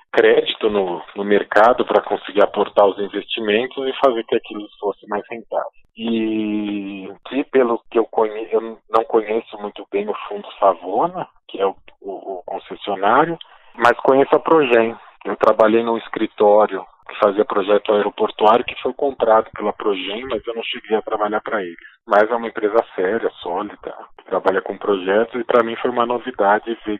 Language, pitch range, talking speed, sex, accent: Portuguese, 105-130 Hz, 175 wpm, male, Brazilian